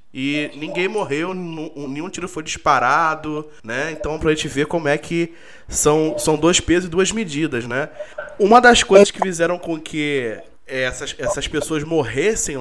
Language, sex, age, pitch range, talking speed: Portuguese, male, 20-39, 140-195 Hz, 160 wpm